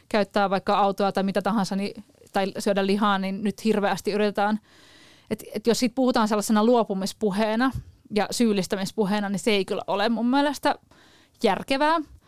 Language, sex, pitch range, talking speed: Finnish, female, 200-235 Hz, 150 wpm